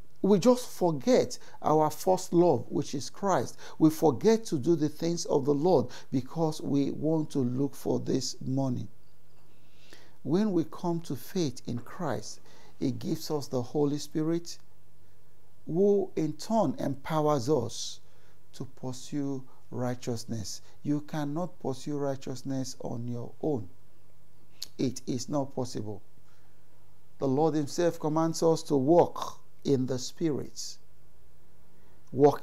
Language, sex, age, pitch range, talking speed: English, male, 50-69, 130-160 Hz, 130 wpm